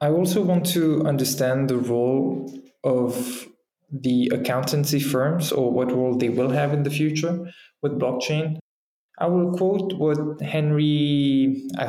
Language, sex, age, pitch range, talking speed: English, male, 20-39, 130-155 Hz, 140 wpm